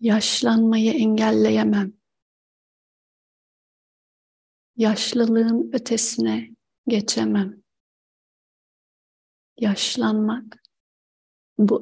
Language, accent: Turkish, native